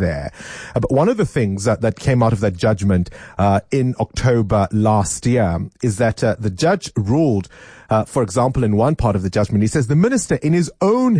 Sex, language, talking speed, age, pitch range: male, English, 220 wpm, 30-49, 105-145 Hz